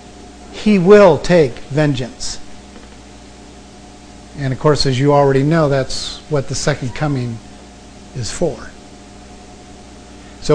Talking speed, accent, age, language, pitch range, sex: 110 wpm, American, 50-69, English, 130-185 Hz, male